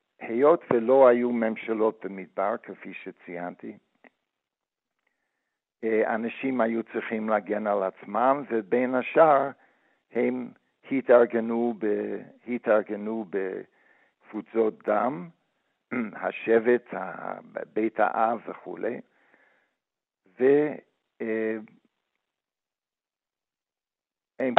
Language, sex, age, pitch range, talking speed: Hebrew, male, 60-79, 110-130 Hz, 60 wpm